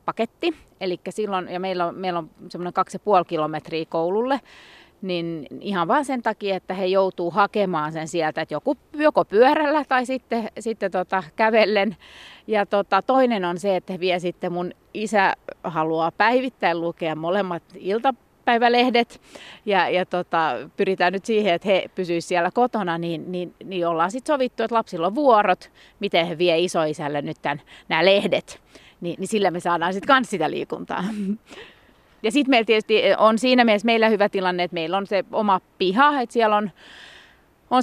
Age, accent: 30-49, native